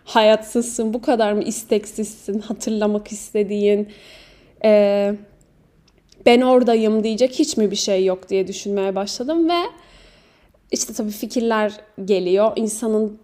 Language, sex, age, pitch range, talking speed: Turkish, female, 10-29, 205-245 Hz, 115 wpm